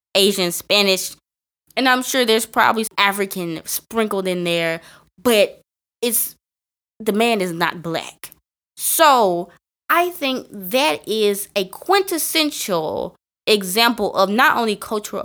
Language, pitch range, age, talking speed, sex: English, 190-250 Hz, 20-39, 120 wpm, female